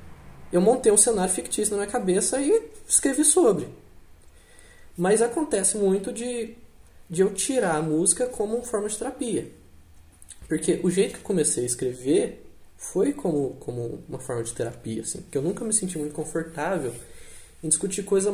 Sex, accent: male, Brazilian